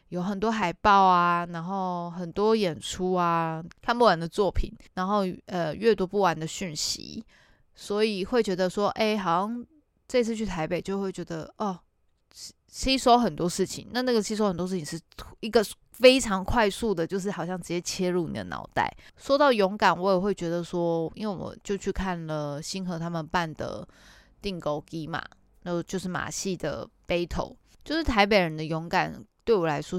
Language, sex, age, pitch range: Chinese, female, 20-39, 170-205 Hz